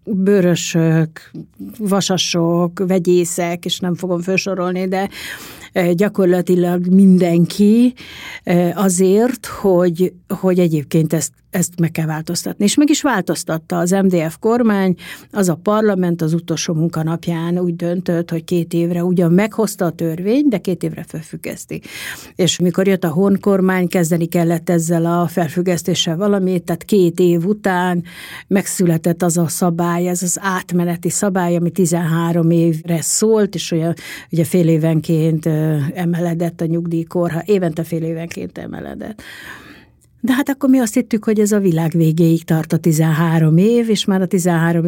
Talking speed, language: 140 wpm, Hungarian